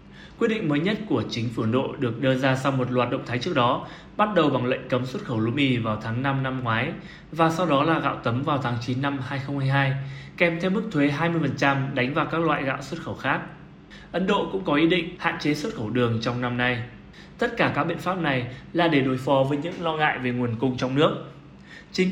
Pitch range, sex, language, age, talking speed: 125-165 Hz, male, Vietnamese, 20-39, 245 wpm